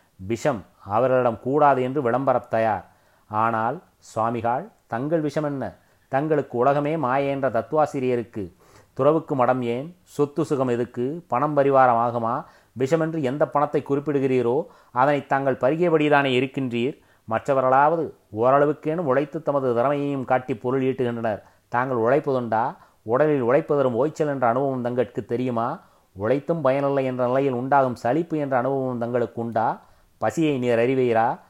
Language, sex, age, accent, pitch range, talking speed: Tamil, male, 30-49, native, 120-140 Hz, 120 wpm